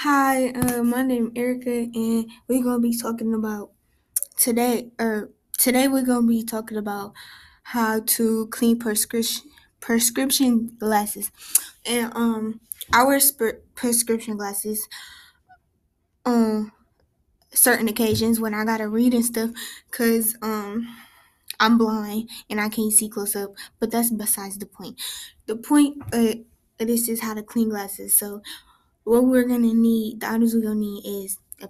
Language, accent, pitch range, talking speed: English, American, 215-245 Hz, 155 wpm